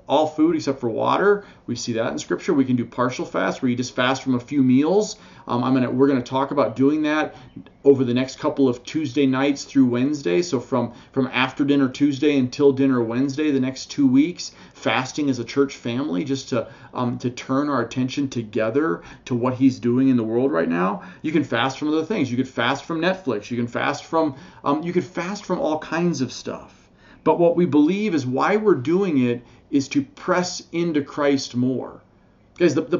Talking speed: 215 wpm